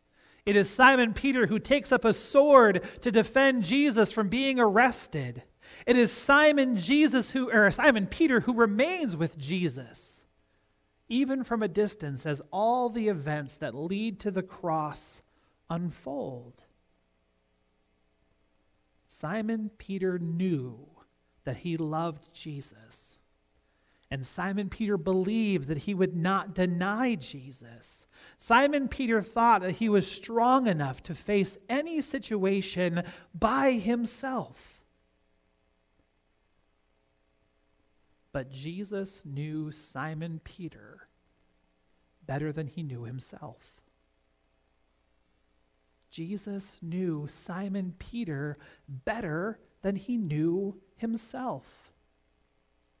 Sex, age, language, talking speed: male, 40-59, English, 105 wpm